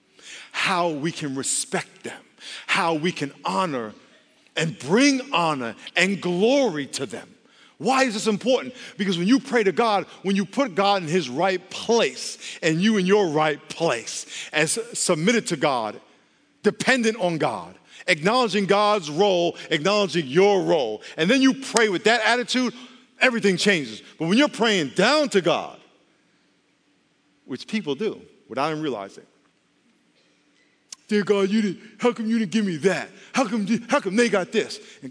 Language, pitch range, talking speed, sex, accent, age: English, 170-235 Hz, 155 wpm, male, American, 50-69